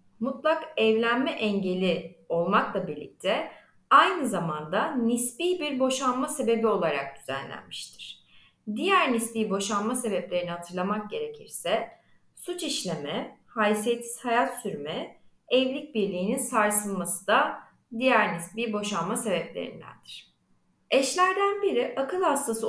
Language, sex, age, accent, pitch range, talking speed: Turkish, female, 30-49, native, 210-275 Hz, 95 wpm